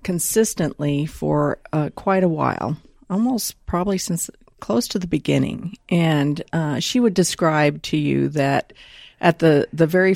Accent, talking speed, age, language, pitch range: American, 150 wpm, 50-69, English, 150-175 Hz